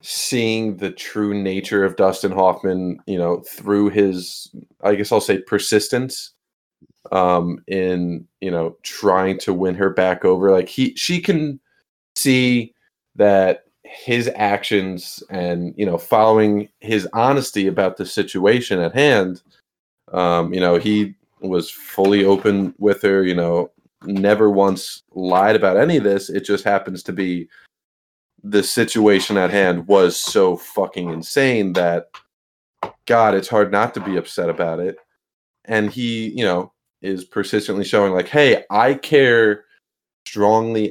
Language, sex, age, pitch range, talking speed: English, male, 30-49, 95-105 Hz, 145 wpm